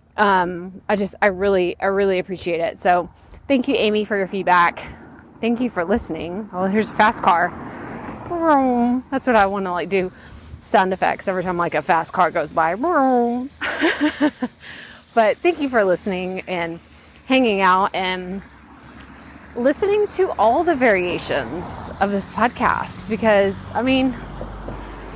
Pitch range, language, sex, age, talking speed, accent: 180-230 Hz, English, female, 20-39, 150 wpm, American